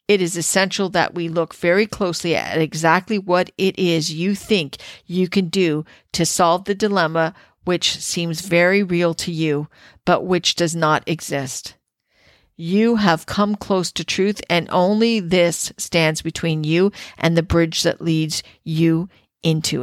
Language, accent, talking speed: English, American, 155 wpm